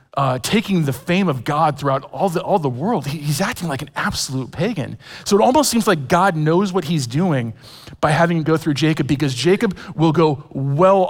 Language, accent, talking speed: English, American, 215 wpm